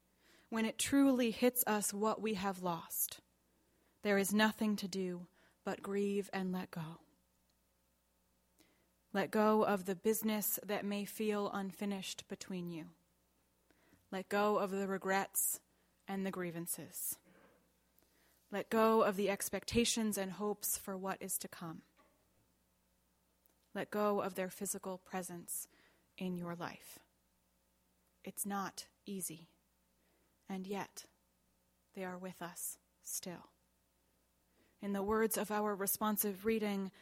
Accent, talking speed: American, 125 wpm